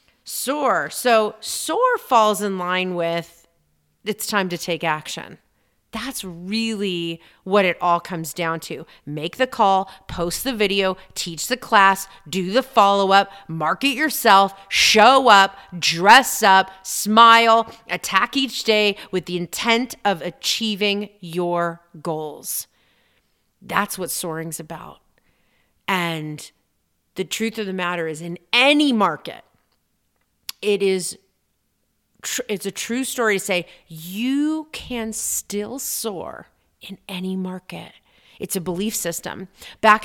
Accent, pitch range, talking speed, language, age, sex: American, 180-240 Hz, 125 wpm, English, 30-49, female